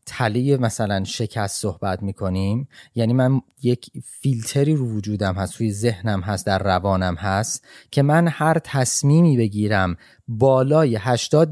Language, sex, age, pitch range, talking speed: Persian, male, 30-49, 105-140 Hz, 130 wpm